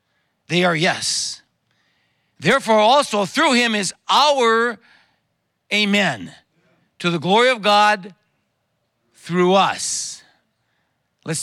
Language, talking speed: English, 95 wpm